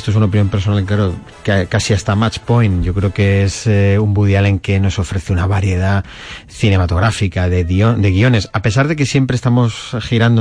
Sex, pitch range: male, 95-115 Hz